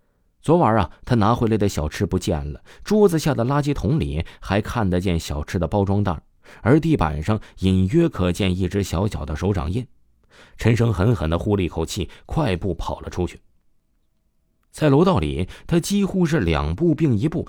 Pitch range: 85-120 Hz